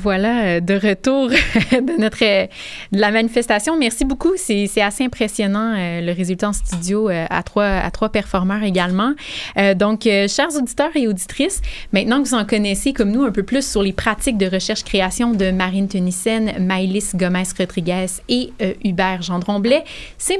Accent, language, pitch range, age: Canadian, French, 190-245 Hz, 30-49